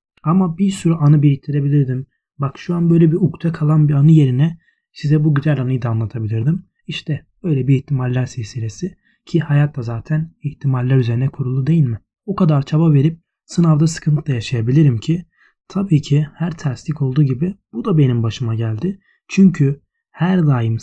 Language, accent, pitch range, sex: Turkish, native, 135-165 Hz, male